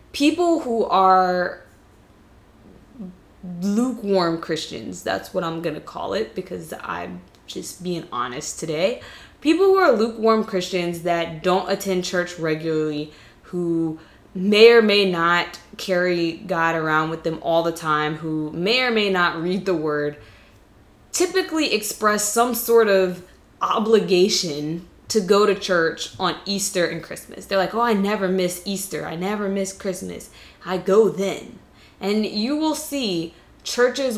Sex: female